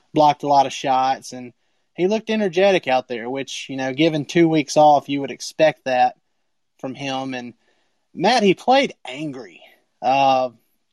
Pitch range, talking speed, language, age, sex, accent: 130-150 Hz, 165 wpm, English, 30-49, male, American